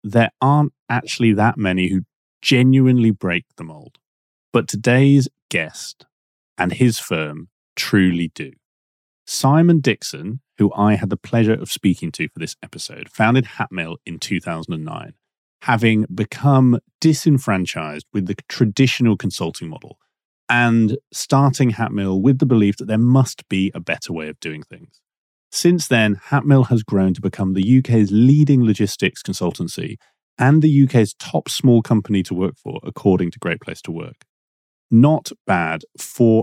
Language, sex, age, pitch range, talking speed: English, male, 30-49, 95-130 Hz, 145 wpm